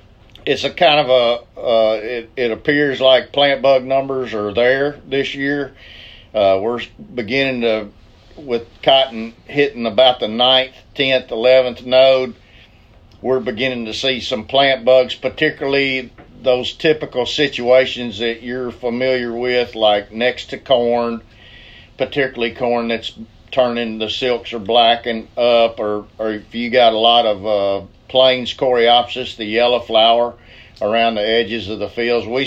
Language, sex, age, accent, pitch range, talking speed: English, male, 50-69, American, 110-130 Hz, 145 wpm